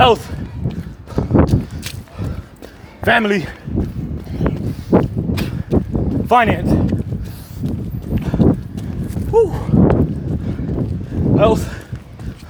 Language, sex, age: English, male, 30-49